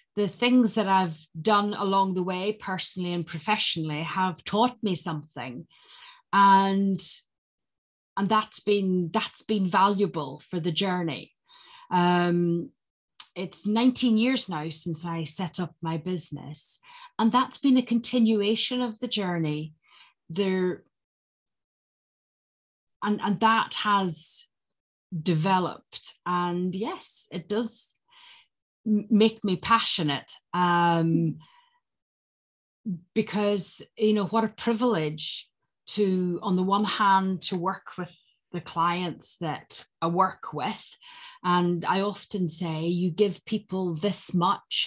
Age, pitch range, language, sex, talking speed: 30-49, 165-210 Hz, English, female, 115 wpm